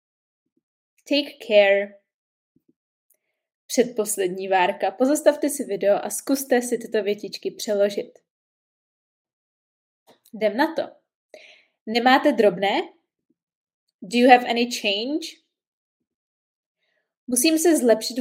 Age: 20-39